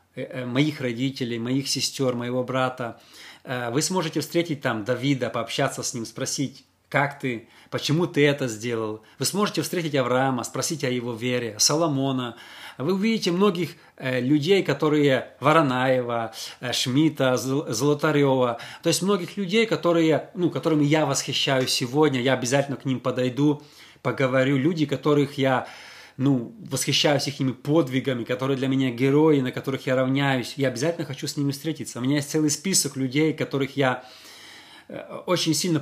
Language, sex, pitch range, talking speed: Russian, male, 125-155 Hz, 140 wpm